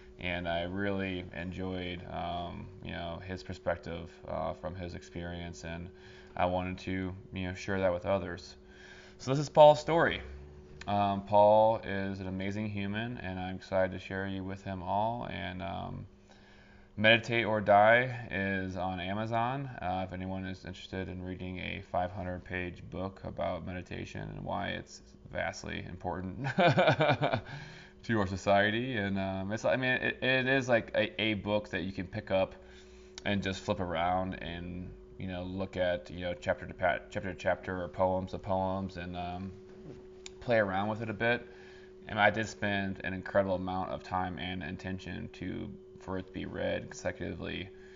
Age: 20-39